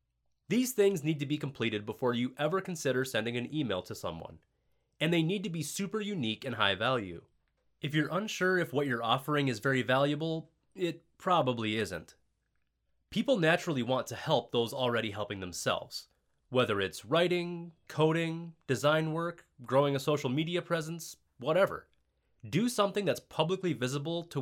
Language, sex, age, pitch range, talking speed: English, male, 20-39, 115-170 Hz, 160 wpm